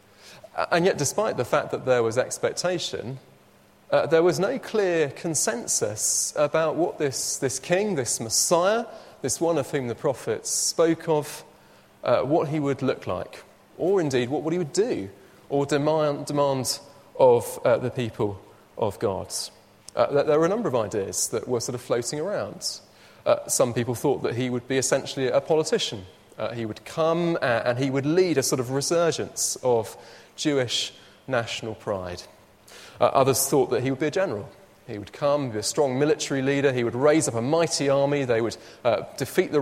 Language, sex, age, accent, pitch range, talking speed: English, male, 30-49, British, 125-165 Hz, 185 wpm